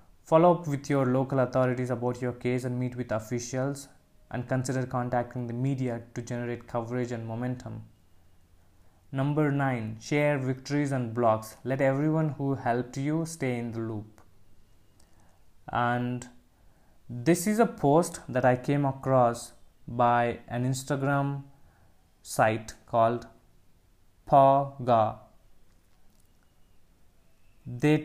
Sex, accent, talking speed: male, Indian, 115 wpm